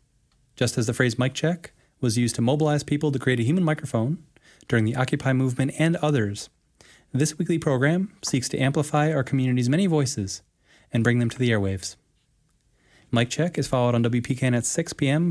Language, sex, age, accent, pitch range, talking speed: English, male, 20-39, American, 120-145 Hz, 185 wpm